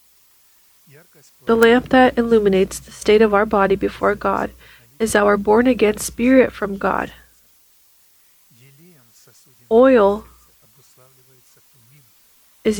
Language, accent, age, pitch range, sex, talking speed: English, American, 30-49, 170-225 Hz, female, 90 wpm